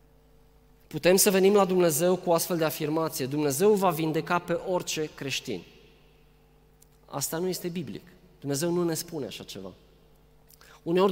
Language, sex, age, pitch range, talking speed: Romanian, male, 20-39, 150-195 Hz, 145 wpm